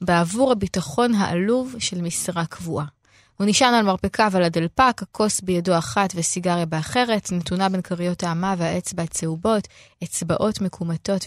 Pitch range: 175-220 Hz